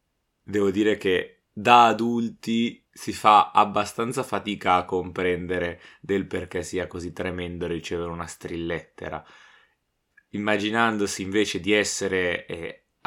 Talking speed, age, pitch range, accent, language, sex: 110 wpm, 20-39, 90-110 Hz, native, Italian, male